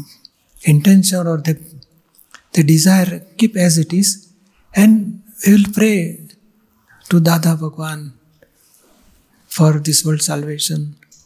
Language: Gujarati